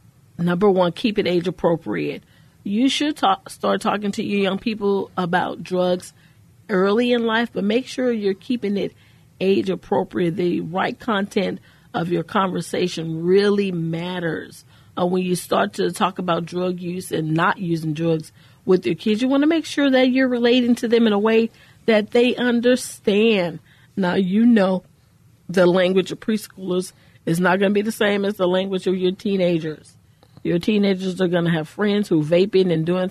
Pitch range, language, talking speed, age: 165-210 Hz, English, 175 wpm, 40-59